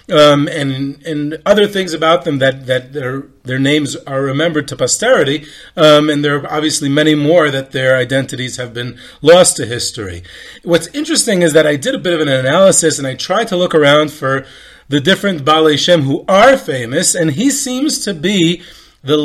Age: 30-49